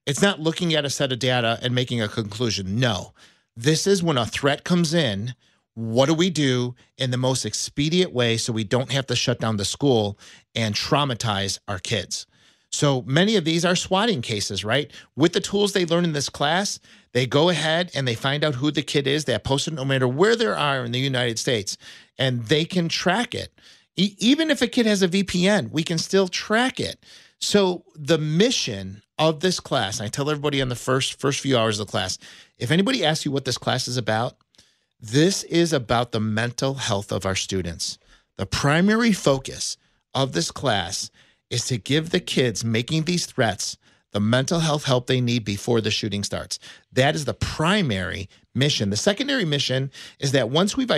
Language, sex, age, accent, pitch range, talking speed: English, male, 40-59, American, 115-170 Hz, 200 wpm